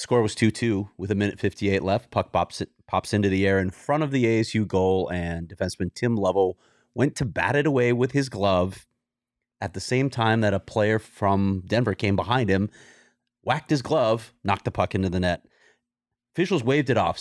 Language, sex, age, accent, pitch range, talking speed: English, male, 30-49, American, 95-125 Hz, 200 wpm